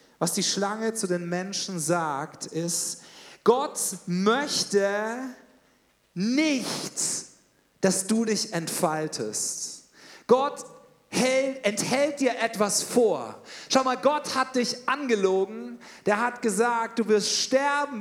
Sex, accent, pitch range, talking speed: male, German, 215-270 Hz, 105 wpm